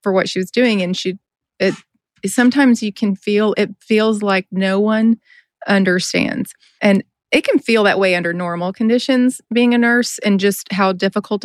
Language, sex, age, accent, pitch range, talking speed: English, female, 30-49, American, 175-210 Hz, 180 wpm